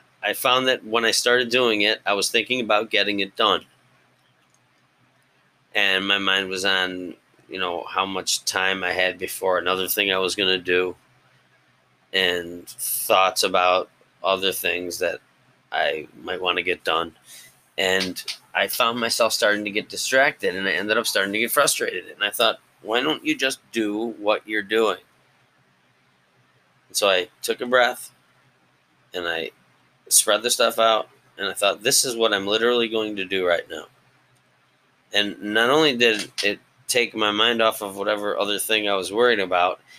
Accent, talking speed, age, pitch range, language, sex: American, 175 wpm, 30-49, 95-120 Hz, English, male